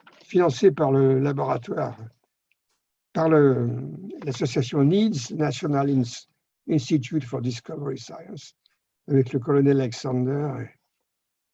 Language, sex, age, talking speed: French, male, 60-79, 90 wpm